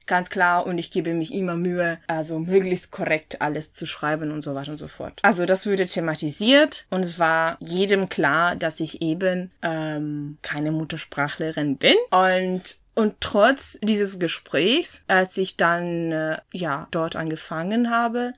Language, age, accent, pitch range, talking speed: German, 20-39, German, 180-245 Hz, 155 wpm